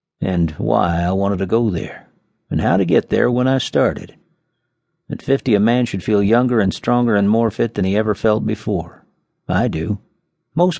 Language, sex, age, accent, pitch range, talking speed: English, male, 50-69, American, 100-120 Hz, 195 wpm